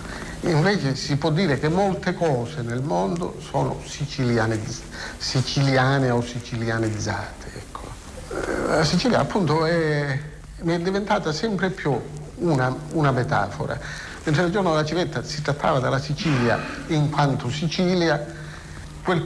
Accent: native